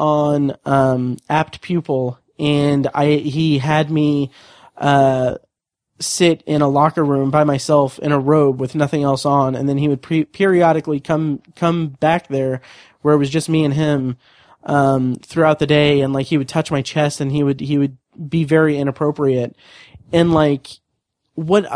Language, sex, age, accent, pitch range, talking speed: English, male, 20-39, American, 140-160 Hz, 170 wpm